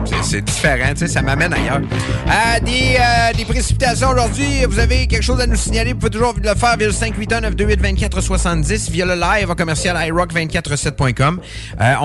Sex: male